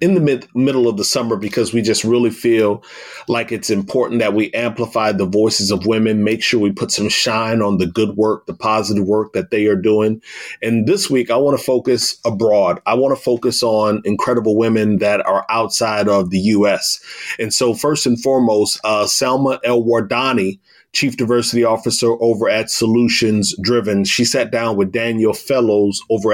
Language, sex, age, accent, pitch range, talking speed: English, male, 30-49, American, 105-120 Hz, 185 wpm